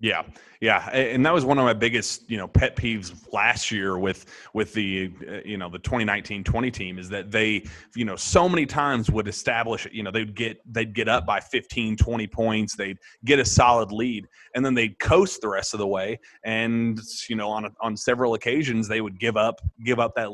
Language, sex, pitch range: English, male, 105-120 Hz